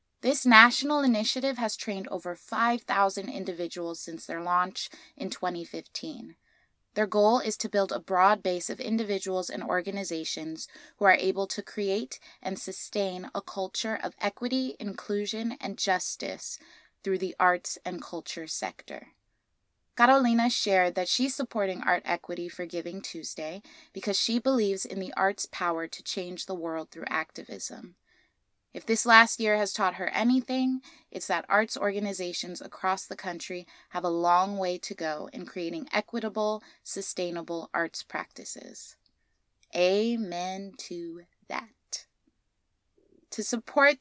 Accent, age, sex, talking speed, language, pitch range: American, 20-39, female, 135 wpm, English, 180-230 Hz